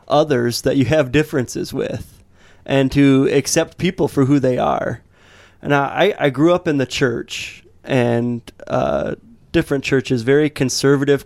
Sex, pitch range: male, 125-150 Hz